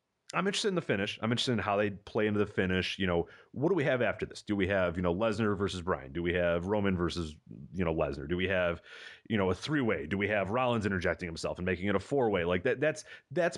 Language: English